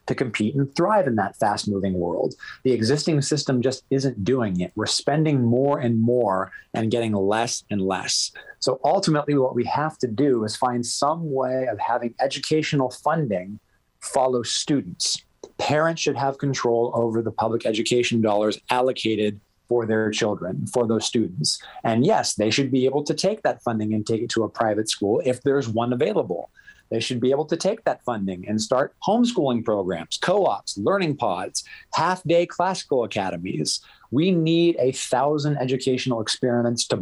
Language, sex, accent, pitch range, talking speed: English, male, American, 110-140 Hz, 170 wpm